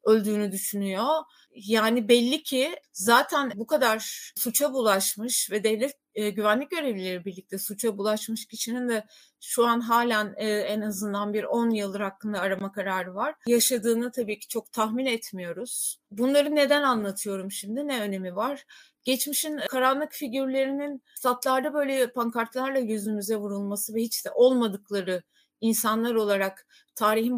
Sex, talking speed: female, 135 wpm